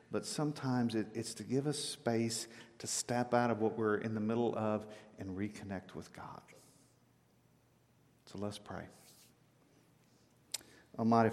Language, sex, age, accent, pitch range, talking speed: English, male, 50-69, American, 105-130 Hz, 130 wpm